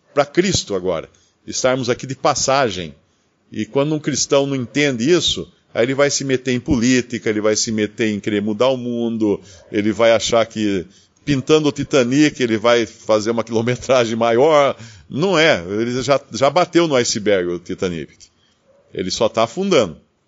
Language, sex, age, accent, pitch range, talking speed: Portuguese, male, 50-69, Brazilian, 110-145 Hz, 170 wpm